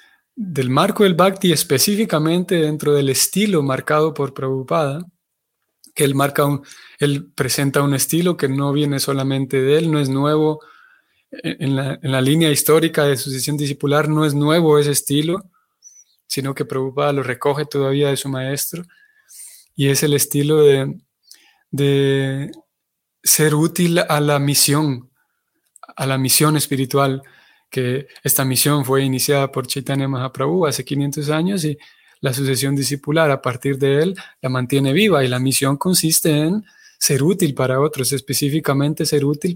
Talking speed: 150 wpm